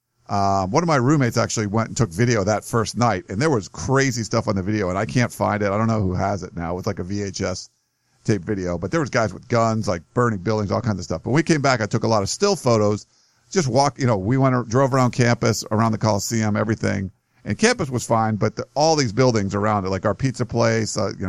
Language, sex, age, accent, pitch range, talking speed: English, male, 50-69, American, 105-130 Hz, 265 wpm